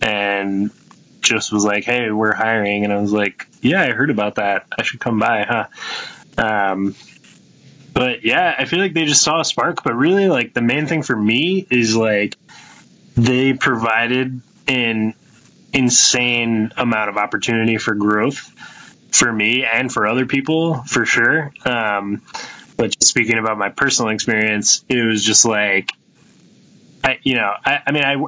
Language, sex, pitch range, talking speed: English, male, 105-125 Hz, 165 wpm